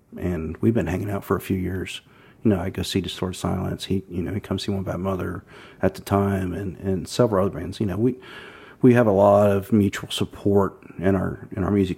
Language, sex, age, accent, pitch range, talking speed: English, male, 40-59, American, 95-120 Hz, 240 wpm